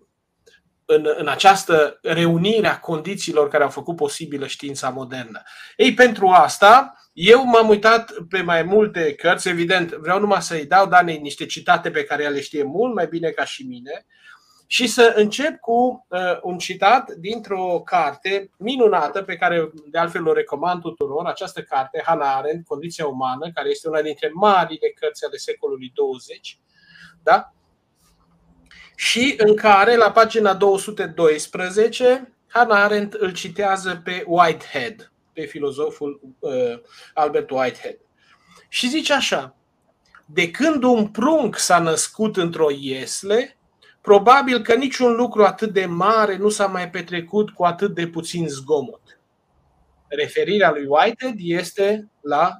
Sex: male